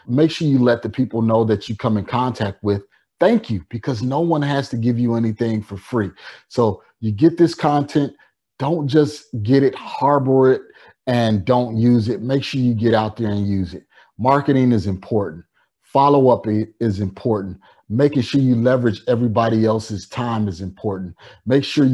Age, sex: 30-49, male